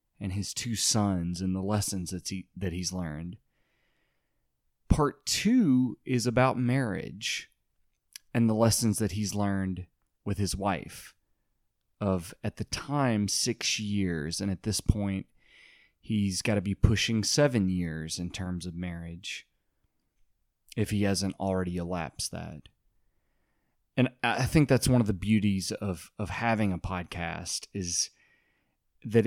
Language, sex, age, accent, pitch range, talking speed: English, male, 30-49, American, 95-115 Hz, 140 wpm